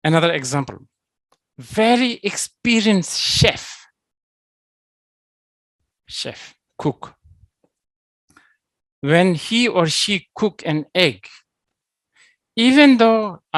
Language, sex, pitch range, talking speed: English, male, 130-175 Hz, 70 wpm